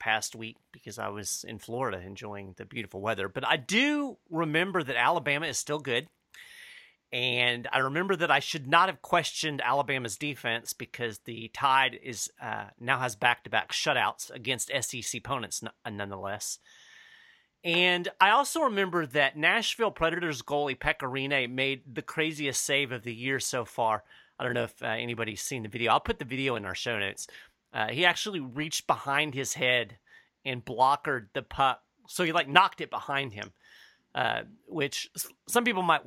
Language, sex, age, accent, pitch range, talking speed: English, male, 40-59, American, 120-165 Hz, 170 wpm